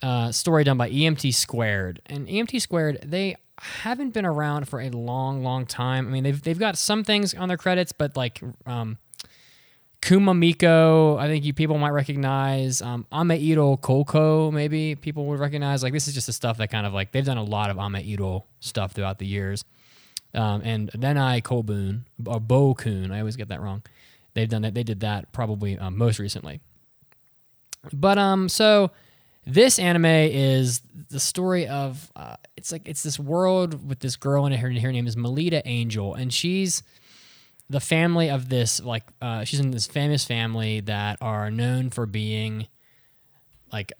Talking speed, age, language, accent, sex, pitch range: 180 wpm, 20-39, English, American, male, 110-150 Hz